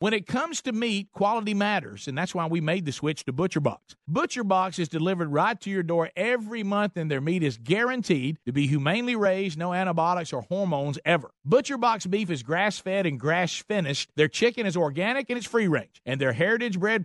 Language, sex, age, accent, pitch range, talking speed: English, male, 50-69, American, 160-215 Hz, 195 wpm